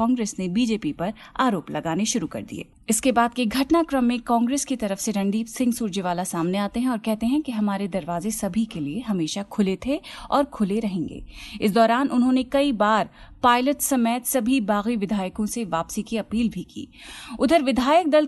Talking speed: 190 wpm